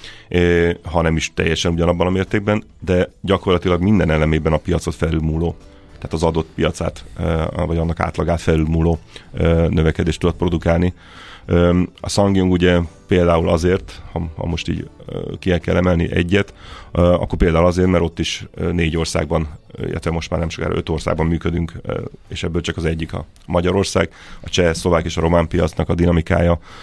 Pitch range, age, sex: 80-90 Hz, 30-49, male